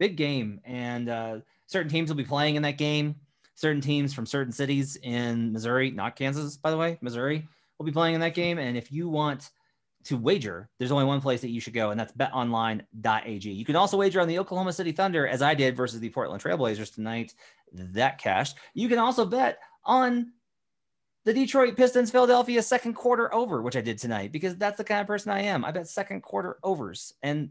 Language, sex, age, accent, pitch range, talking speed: English, male, 30-49, American, 125-170 Hz, 210 wpm